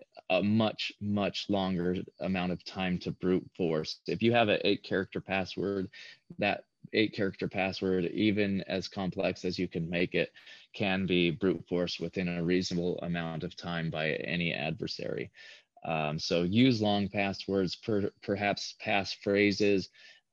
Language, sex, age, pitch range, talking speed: English, male, 20-39, 90-100 Hz, 150 wpm